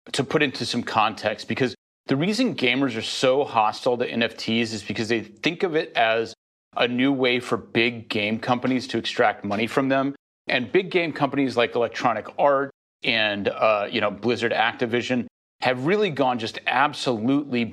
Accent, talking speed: American, 175 wpm